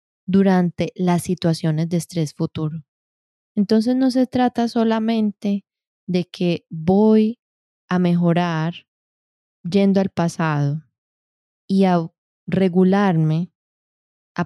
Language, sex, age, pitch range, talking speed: Spanish, female, 20-39, 170-210 Hz, 95 wpm